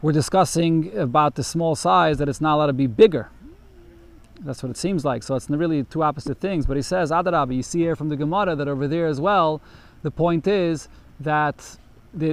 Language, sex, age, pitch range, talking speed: English, male, 30-49, 150-190 Hz, 215 wpm